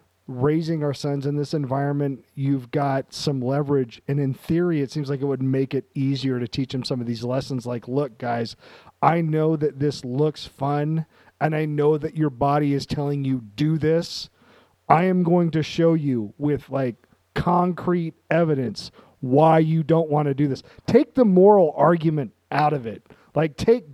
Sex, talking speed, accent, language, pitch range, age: male, 185 wpm, American, English, 135-165 Hz, 40-59